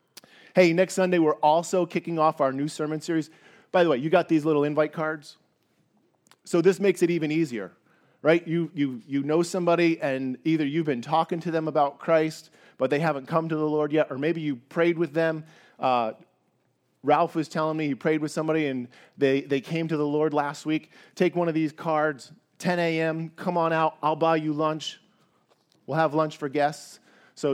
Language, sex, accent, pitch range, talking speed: English, male, American, 145-170 Hz, 205 wpm